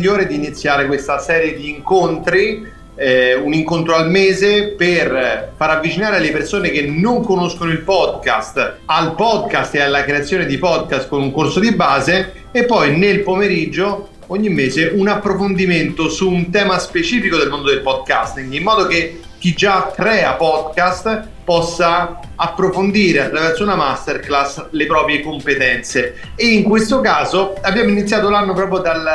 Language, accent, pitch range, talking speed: Italian, native, 155-195 Hz, 150 wpm